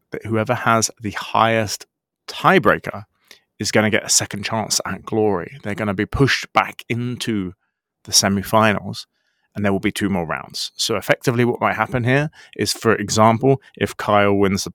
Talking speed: 175 wpm